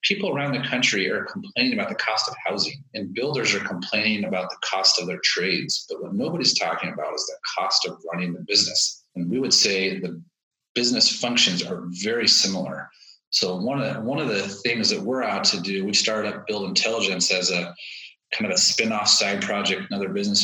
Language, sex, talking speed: English, male, 210 wpm